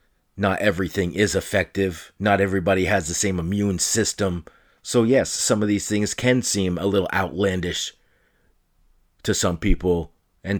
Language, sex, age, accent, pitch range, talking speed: English, male, 40-59, American, 90-105 Hz, 145 wpm